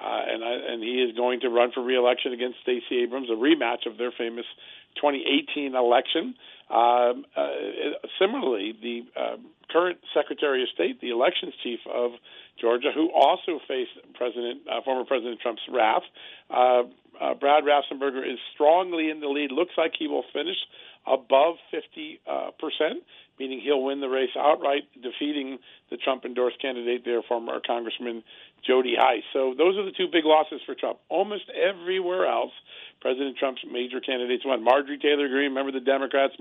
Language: English